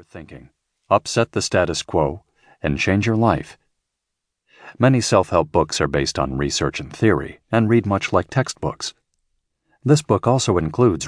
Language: English